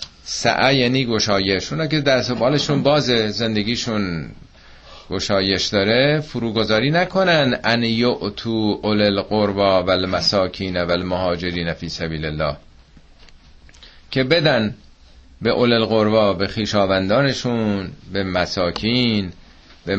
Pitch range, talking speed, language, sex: 90-135 Hz, 100 wpm, Persian, male